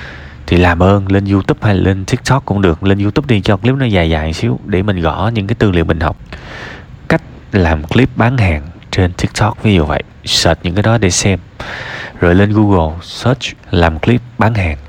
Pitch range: 85-120 Hz